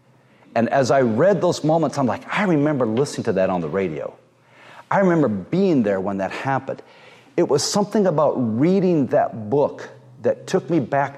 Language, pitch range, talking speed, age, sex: English, 120-165 Hz, 185 wpm, 50-69, male